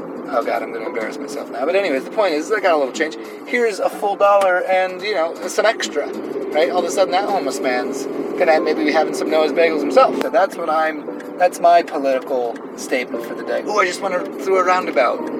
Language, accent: English, American